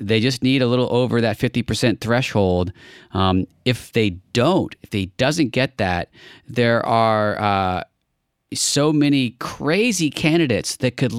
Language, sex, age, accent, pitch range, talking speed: English, male, 40-59, American, 95-115 Hz, 145 wpm